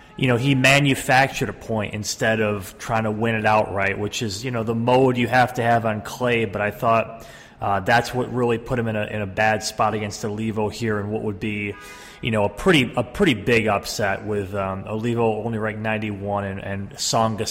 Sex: male